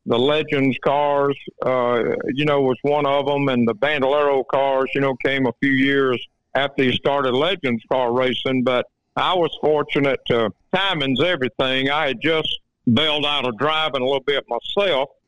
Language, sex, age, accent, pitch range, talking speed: English, male, 50-69, American, 125-145 Hz, 175 wpm